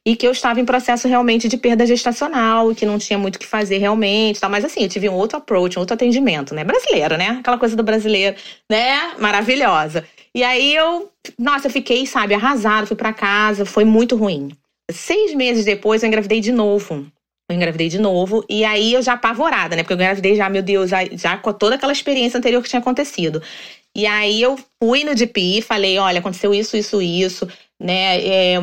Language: Portuguese